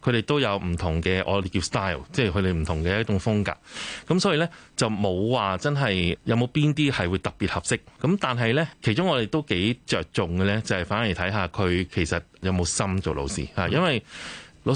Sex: male